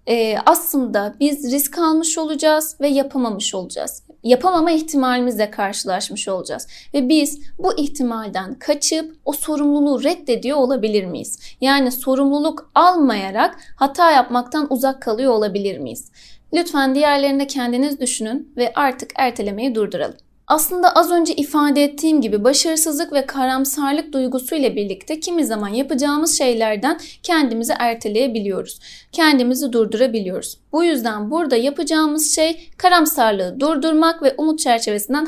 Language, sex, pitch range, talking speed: Turkish, female, 245-315 Hz, 115 wpm